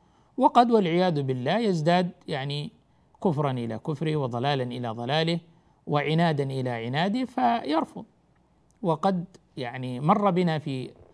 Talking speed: 110 wpm